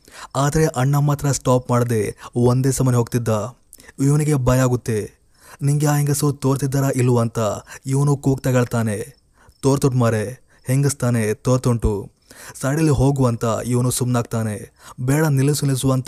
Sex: male